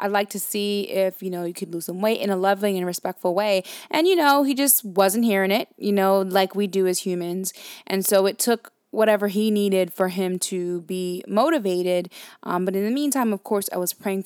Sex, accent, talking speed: female, American, 230 wpm